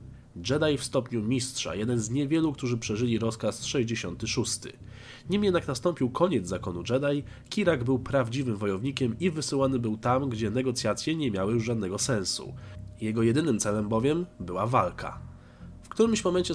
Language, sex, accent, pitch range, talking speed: Polish, male, native, 110-145 Hz, 150 wpm